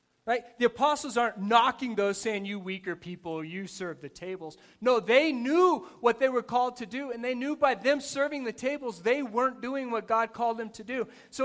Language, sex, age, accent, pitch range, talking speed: English, male, 30-49, American, 195-280 Hz, 215 wpm